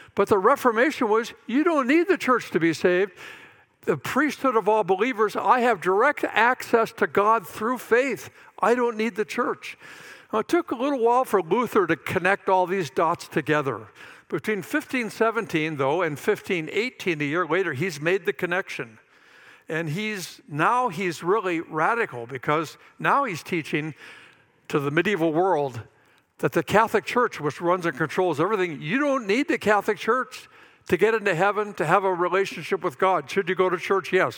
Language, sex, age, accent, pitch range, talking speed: English, male, 60-79, American, 155-220 Hz, 175 wpm